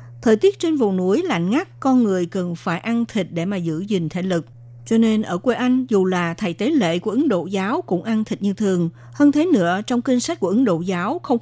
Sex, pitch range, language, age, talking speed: female, 175-240 Hz, Vietnamese, 60-79, 255 wpm